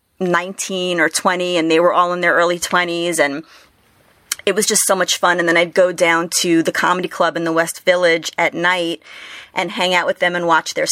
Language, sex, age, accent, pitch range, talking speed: English, female, 30-49, American, 165-190 Hz, 225 wpm